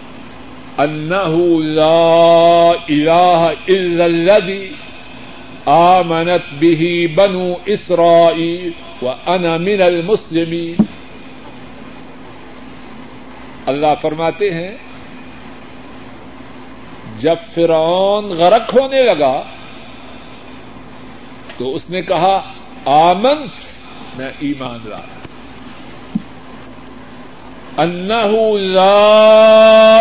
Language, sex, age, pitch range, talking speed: Urdu, male, 60-79, 165-220 Hz, 50 wpm